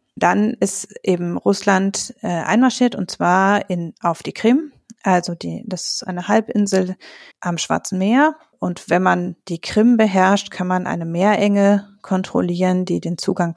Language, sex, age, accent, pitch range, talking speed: German, female, 30-49, German, 175-205 Hz, 150 wpm